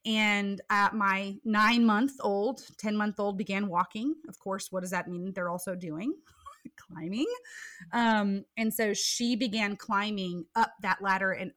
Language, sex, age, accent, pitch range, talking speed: English, female, 30-49, American, 185-225 Hz, 145 wpm